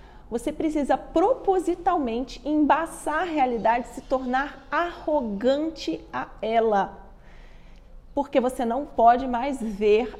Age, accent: 30-49, Brazilian